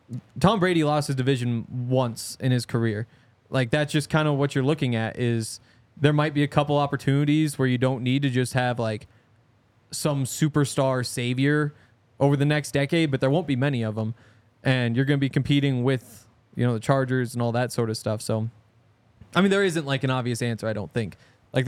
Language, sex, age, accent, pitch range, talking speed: English, male, 20-39, American, 115-145 Hz, 215 wpm